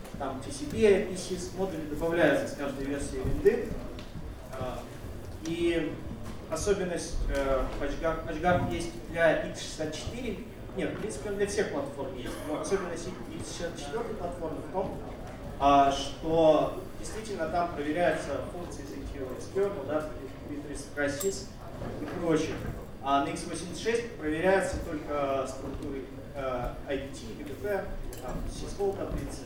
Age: 30-49